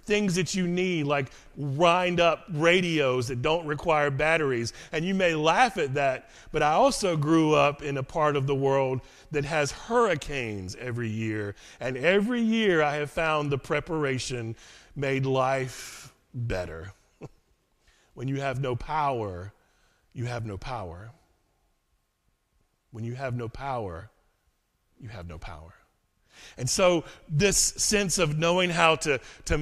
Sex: male